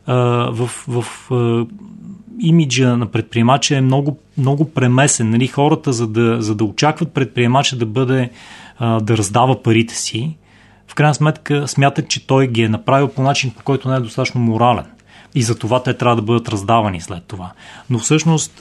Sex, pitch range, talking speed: male, 115-145 Hz, 175 wpm